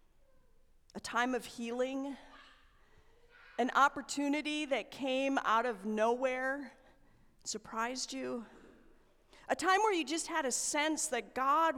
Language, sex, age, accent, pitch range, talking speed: English, female, 40-59, American, 230-295 Hz, 115 wpm